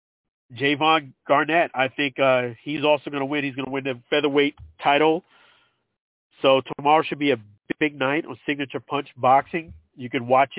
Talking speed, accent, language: 175 wpm, American, English